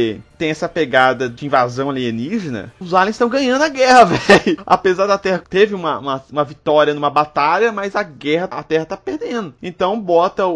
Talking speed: 180 wpm